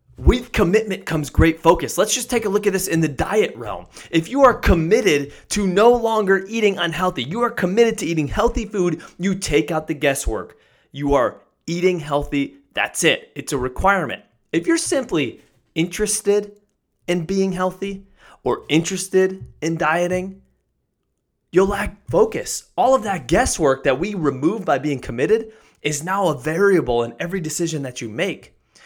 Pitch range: 155-205 Hz